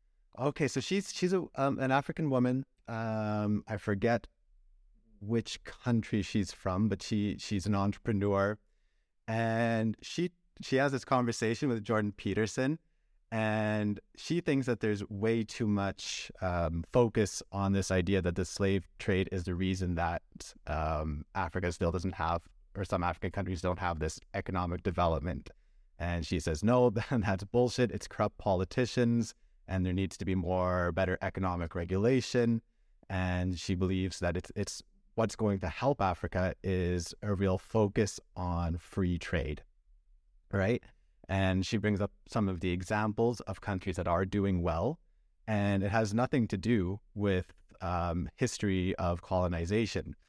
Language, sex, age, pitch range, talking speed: English, male, 30-49, 90-110 Hz, 155 wpm